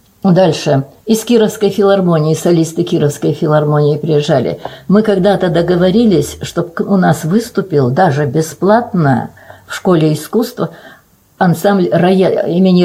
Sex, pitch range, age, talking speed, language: female, 150-195 Hz, 60-79, 105 wpm, Russian